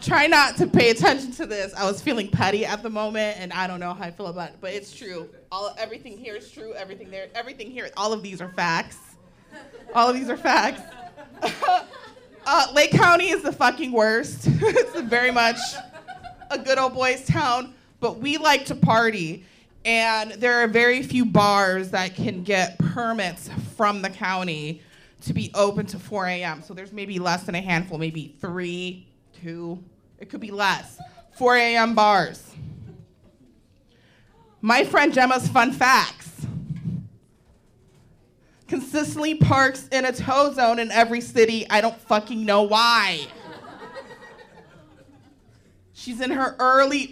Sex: female